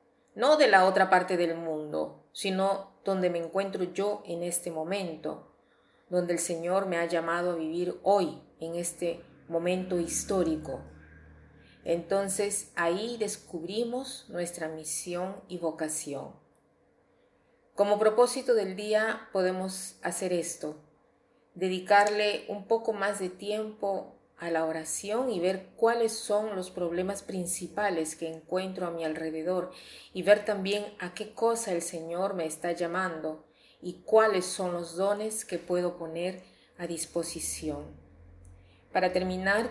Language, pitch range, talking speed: Spanish, 165-200 Hz, 130 wpm